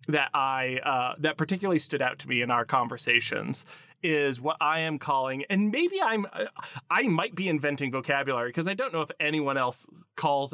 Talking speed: 190 wpm